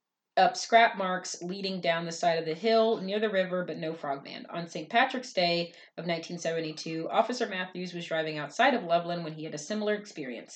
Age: 30-49